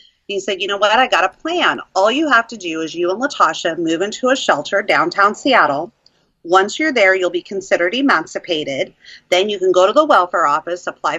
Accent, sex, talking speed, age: American, female, 215 wpm, 40-59